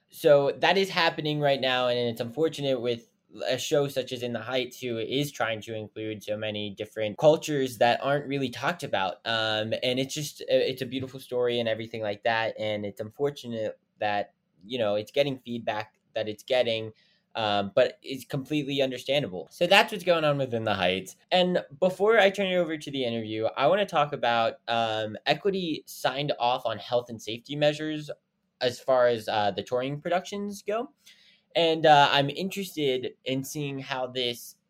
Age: 10-29